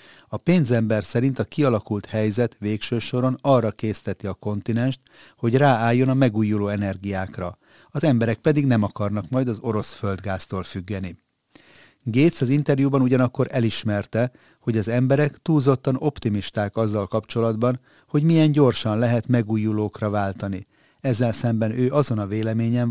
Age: 30-49